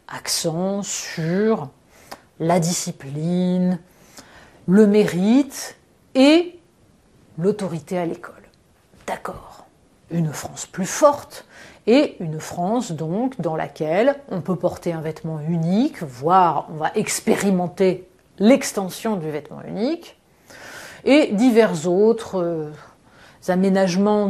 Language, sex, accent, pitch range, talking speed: French, female, French, 175-240 Hz, 95 wpm